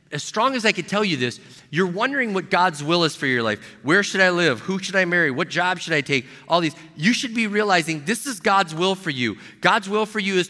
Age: 40-59